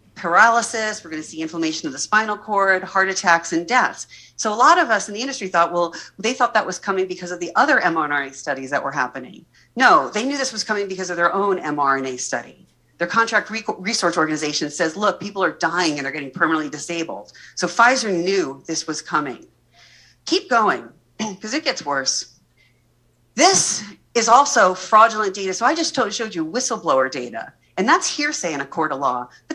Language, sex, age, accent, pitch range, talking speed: English, female, 40-59, American, 170-235 Hz, 195 wpm